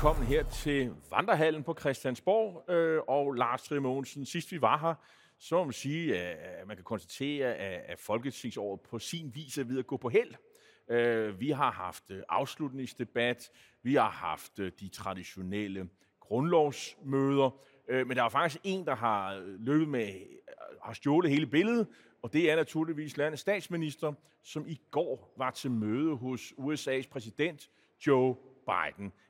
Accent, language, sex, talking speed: native, Danish, male, 155 wpm